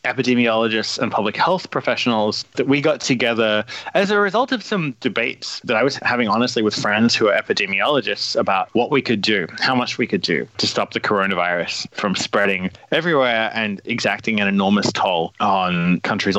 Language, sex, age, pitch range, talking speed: English, male, 20-39, 105-130 Hz, 180 wpm